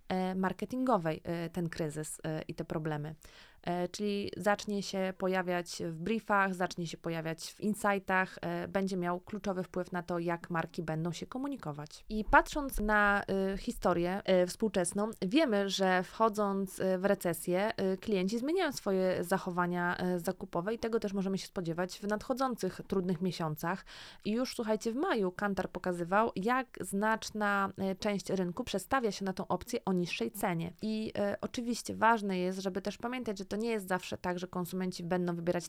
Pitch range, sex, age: 175-205 Hz, female, 20-39